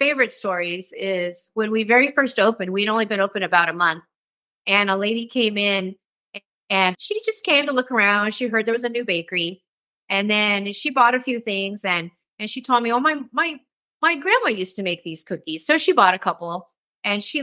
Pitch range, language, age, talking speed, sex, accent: 190-235 Hz, English, 30-49, 215 wpm, female, American